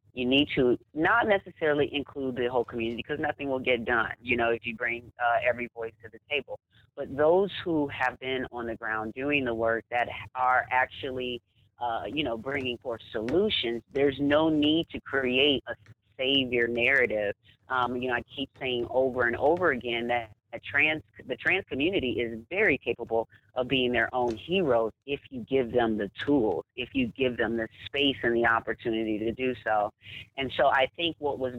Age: 40-59